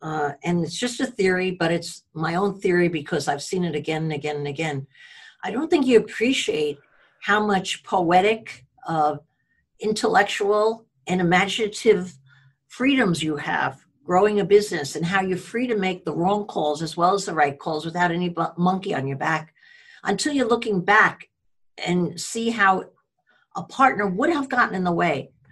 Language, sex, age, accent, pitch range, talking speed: English, female, 60-79, American, 170-255 Hz, 175 wpm